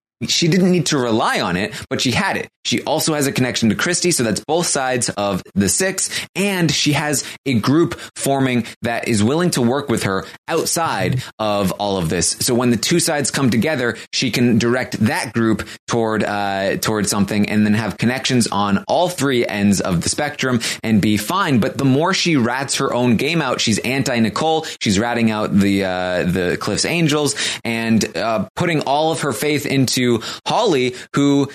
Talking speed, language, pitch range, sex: 195 wpm, English, 115-175 Hz, male